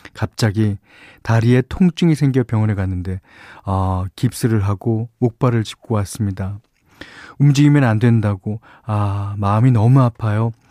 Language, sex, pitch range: Korean, male, 100-130 Hz